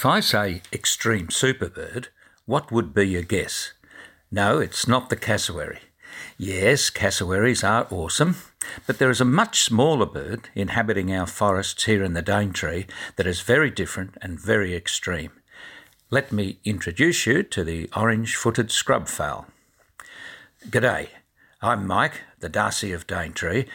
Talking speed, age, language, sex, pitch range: 145 wpm, 60-79, English, male, 95-120 Hz